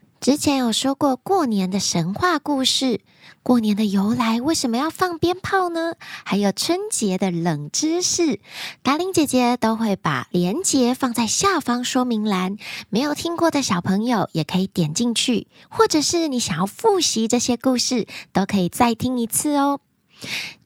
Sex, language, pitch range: female, Chinese, 200-305 Hz